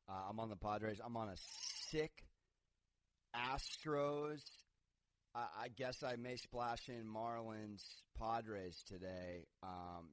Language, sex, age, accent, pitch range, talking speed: English, male, 30-49, American, 95-120 Hz, 125 wpm